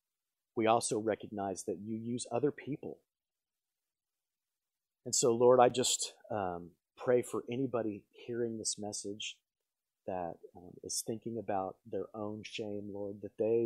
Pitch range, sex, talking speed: 100-125 Hz, male, 135 wpm